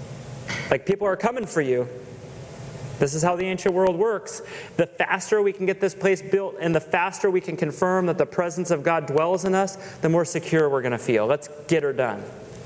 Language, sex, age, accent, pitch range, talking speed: English, male, 30-49, American, 155-200 Hz, 220 wpm